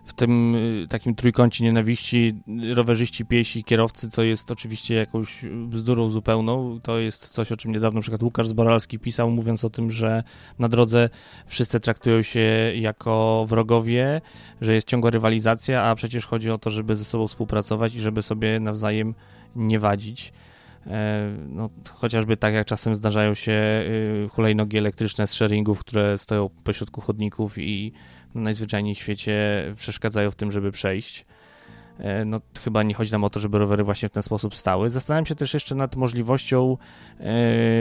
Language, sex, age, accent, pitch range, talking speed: Polish, male, 20-39, native, 105-120 Hz, 165 wpm